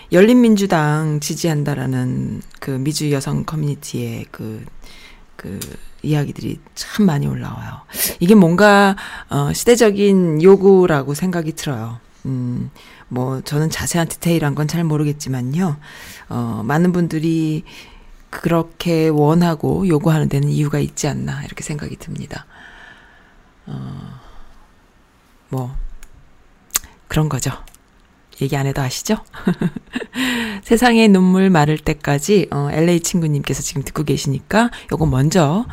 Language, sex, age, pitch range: Korean, female, 40-59, 135-180 Hz